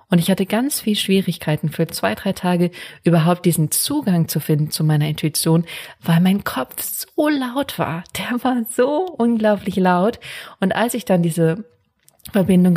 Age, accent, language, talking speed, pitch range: 30-49, German, German, 165 wpm, 170-205 Hz